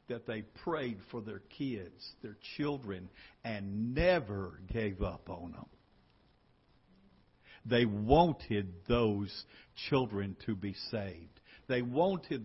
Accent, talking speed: American, 110 wpm